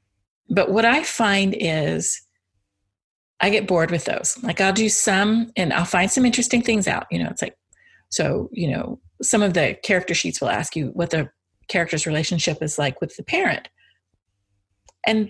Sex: female